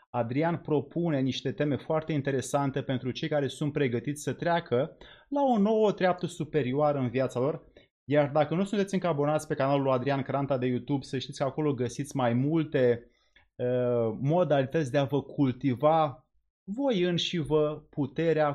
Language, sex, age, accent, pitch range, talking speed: Romanian, male, 30-49, native, 130-160 Hz, 165 wpm